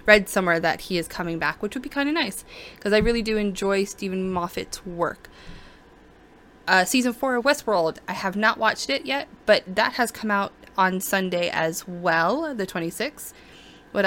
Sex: female